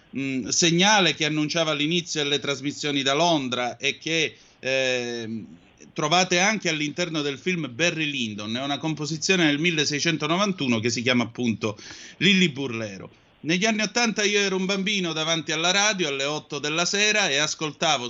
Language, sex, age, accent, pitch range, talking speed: Italian, male, 30-49, native, 125-170 Hz, 155 wpm